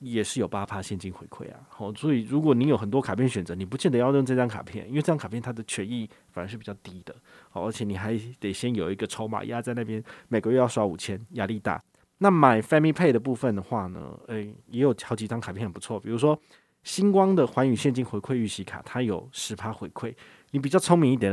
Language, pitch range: Chinese, 105-140 Hz